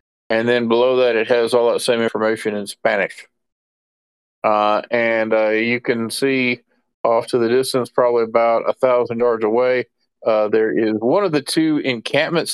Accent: American